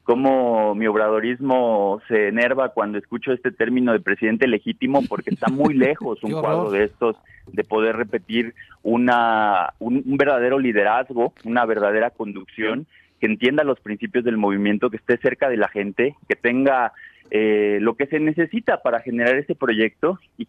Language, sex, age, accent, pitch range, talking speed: Spanish, male, 30-49, Mexican, 110-135 Hz, 160 wpm